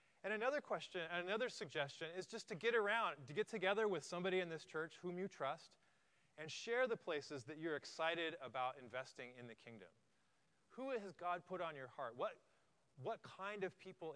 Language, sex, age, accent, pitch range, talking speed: English, male, 30-49, American, 130-185 Hz, 190 wpm